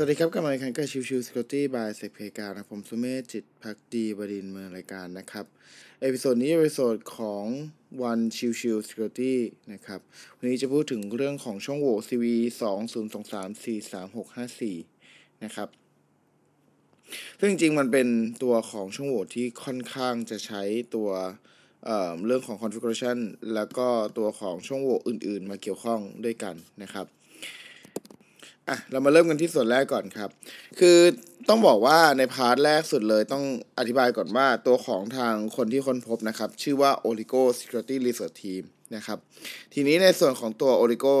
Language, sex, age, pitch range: Thai, male, 20-39, 110-135 Hz